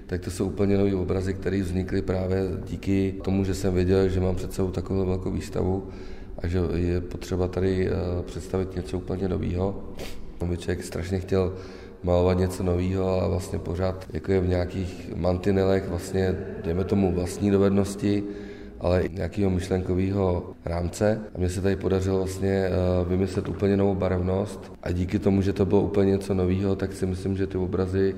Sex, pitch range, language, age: male, 90-95 Hz, Czech, 30-49